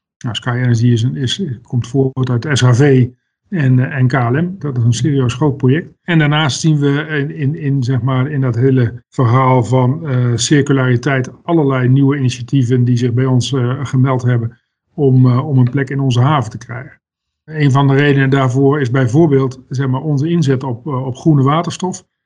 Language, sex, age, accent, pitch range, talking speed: Dutch, male, 50-69, Dutch, 125-145 Hz, 165 wpm